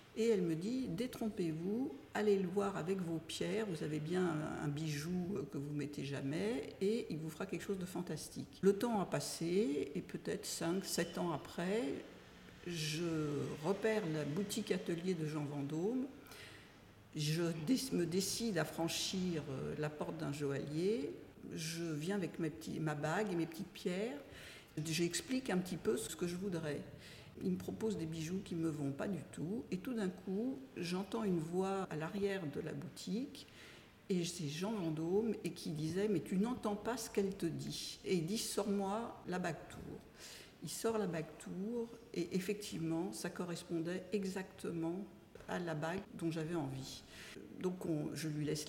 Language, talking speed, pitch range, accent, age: French, 175 wpm, 160-205 Hz, French, 60-79